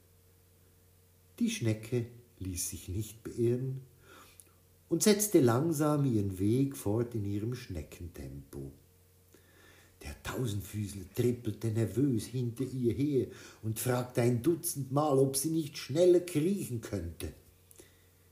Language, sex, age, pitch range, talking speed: German, male, 50-69, 90-135 Hz, 105 wpm